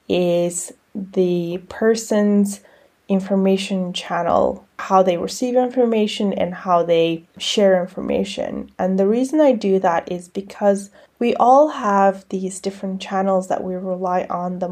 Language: English